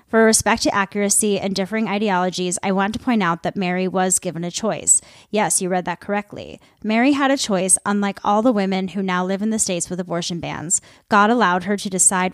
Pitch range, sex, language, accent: 180-215 Hz, female, English, American